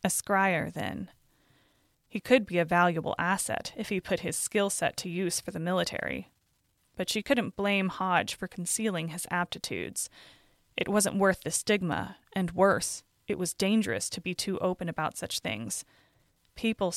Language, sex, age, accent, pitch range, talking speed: English, female, 20-39, American, 175-210 Hz, 165 wpm